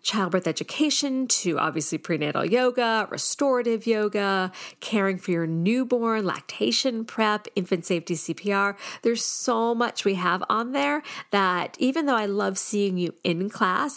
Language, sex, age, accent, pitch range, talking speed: English, female, 40-59, American, 175-235 Hz, 140 wpm